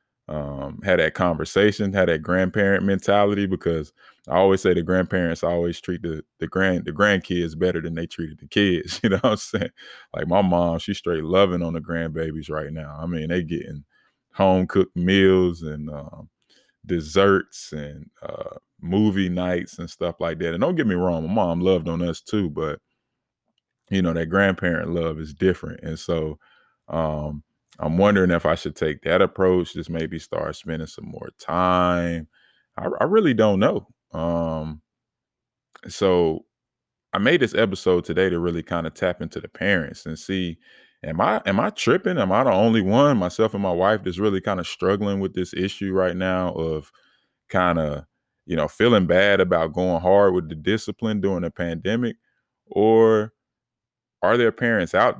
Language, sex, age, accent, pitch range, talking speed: English, male, 20-39, American, 80-95 Hz, 180 wpm